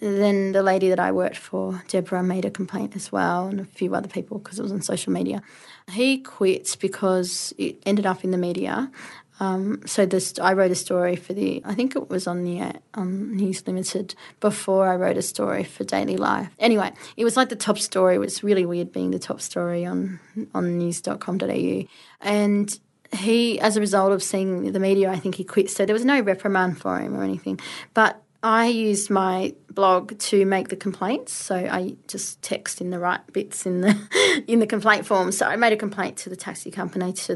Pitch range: 185-215 Hz